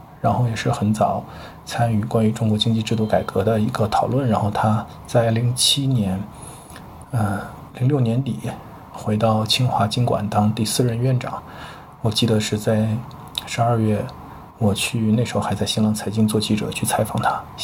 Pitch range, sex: 105-125 Hz, male